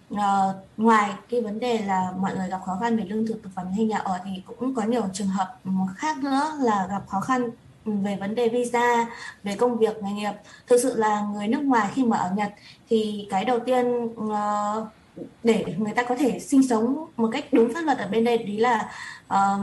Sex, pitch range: female, 205-245 Hz